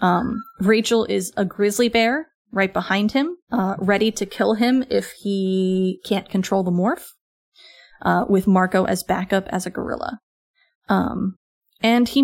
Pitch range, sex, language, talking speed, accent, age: 190-235 Hz, female, English, 150 wpm, American, 30-49